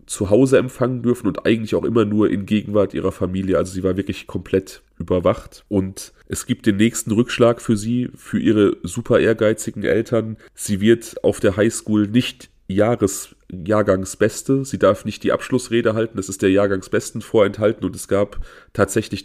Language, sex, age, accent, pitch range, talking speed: German, male, 30-49, German, 95-115 Hz, 170 wpm